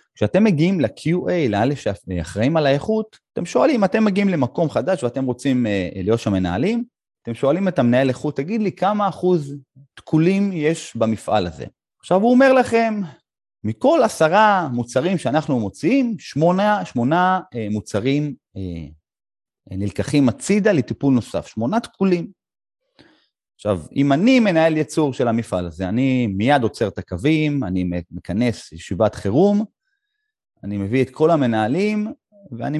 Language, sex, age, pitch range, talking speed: Hebrew, male, 30-49, 110-185 Hz, 130 wpm